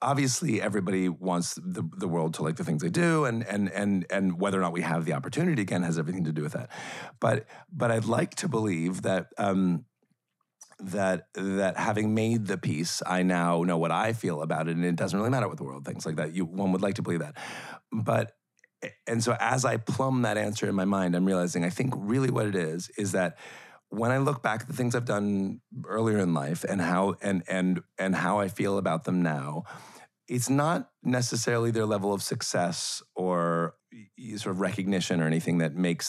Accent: American